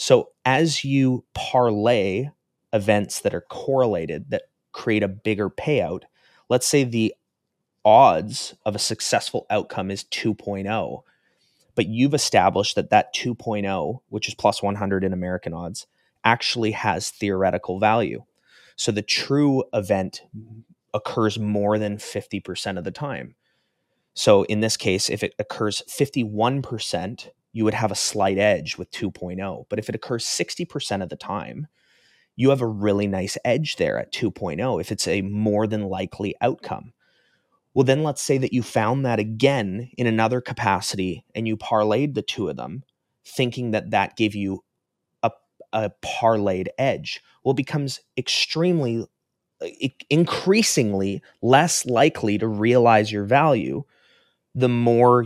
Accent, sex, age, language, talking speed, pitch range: American, male, 30-49, English, 145 wpm, 100-130 Hz